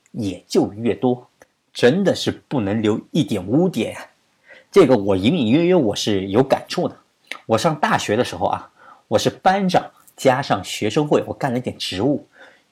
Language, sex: Chinese, male